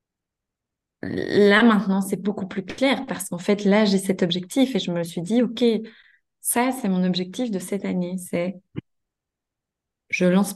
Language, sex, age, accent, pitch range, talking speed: French, female, 20-39, French, 180-215 Hz, 165 wpm